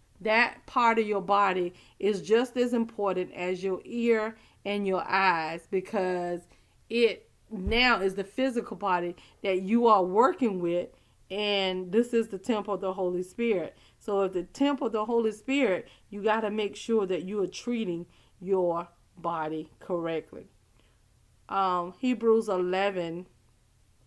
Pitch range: 180-225 Hz